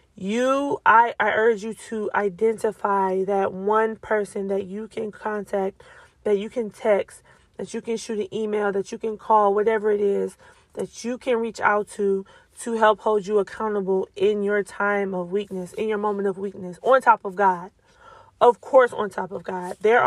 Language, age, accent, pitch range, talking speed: English, 20-39, American, 195-230 Hz, 190 wpm